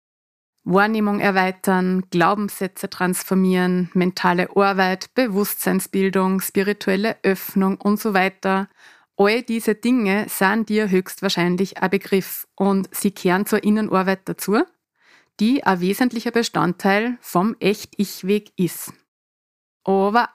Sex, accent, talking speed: female, Swiss, 100 wpm